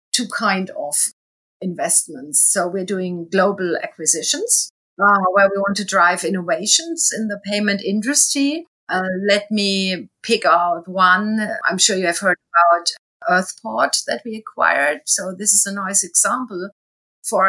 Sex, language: female, English